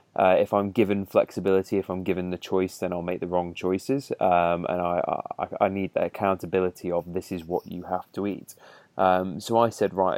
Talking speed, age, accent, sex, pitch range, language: 220 wpm, 20-39, British, male, 90-105 Hz, English